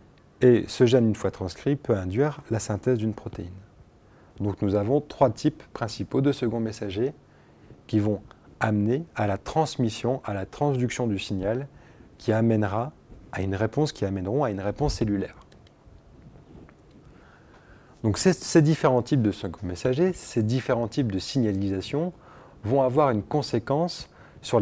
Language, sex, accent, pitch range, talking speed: French, male, French, 105-135 Hz, 150 wpm